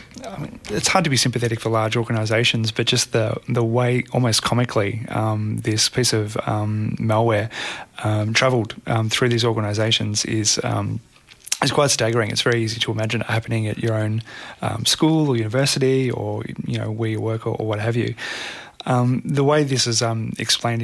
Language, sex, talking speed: English, male, 190 wpm